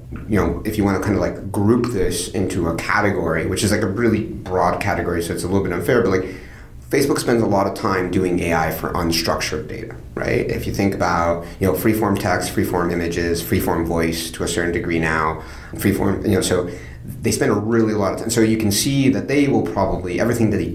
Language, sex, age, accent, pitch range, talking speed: English, male, 30-49, American, 85-110 Hz, 230 wpm